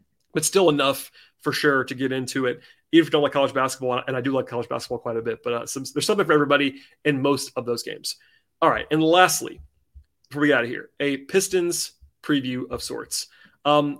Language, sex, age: English, male, 30-49